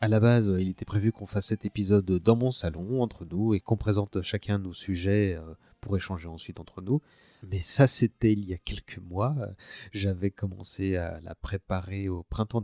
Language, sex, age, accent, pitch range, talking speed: French, male, 30-49, French, 90-115 Hz, 195 wpm